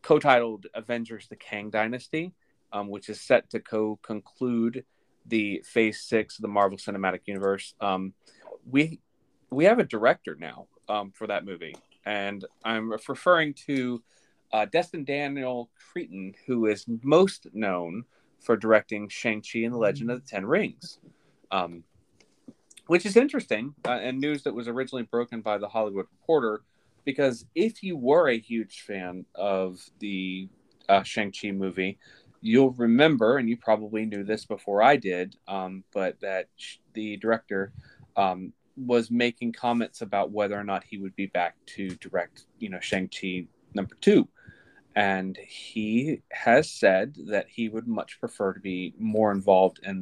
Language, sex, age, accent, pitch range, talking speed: English, male, 30-49, American, 95-120 Hz, 155 wpm